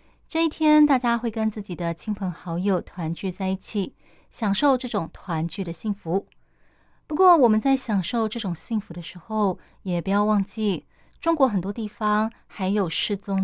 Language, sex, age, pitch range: Chinese, female, 20-39, 180-230 Hz